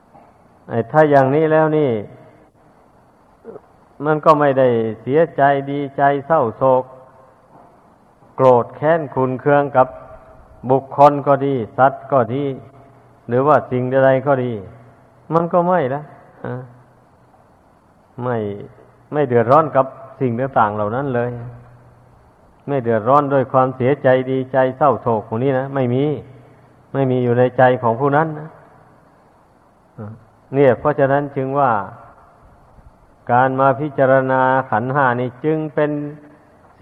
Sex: male